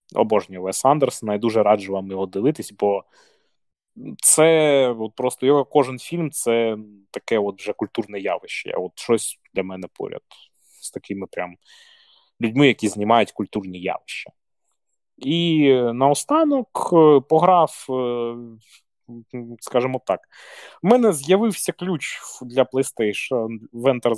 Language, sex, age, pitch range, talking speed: Ukrainian, male, 20-39, 105-135 Hz, 120 wpm